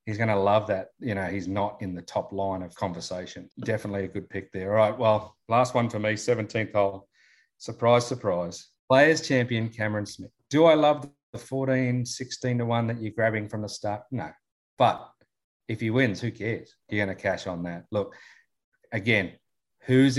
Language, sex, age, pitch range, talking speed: English, male, 40-59, 105-125 Hz, 195 wpm